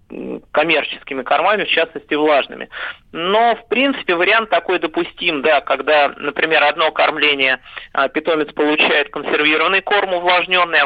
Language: Russian